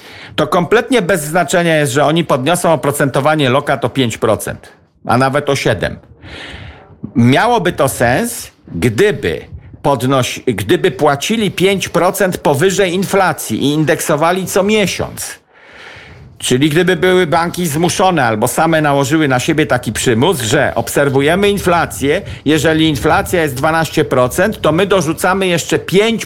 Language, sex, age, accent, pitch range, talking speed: Polish, male, 50-69, native, 125-180 Hz, 120 wpm